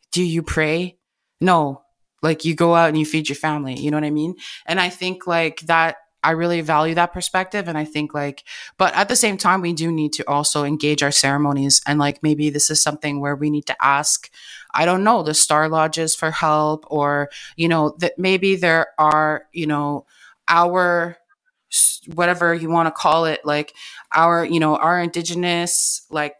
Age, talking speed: 20-39, 200 wpm